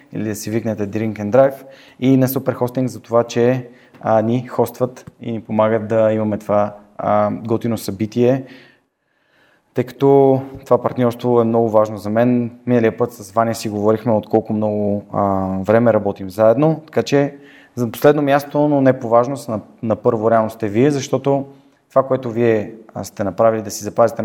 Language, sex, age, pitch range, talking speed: Bulgarian, male, 20-39, 110-125 Hz, 175 wpm